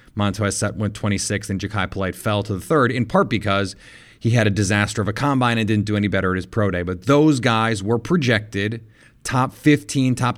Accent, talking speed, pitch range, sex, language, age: American, 220 wpm, 110-135 Hz, male, English, 30-49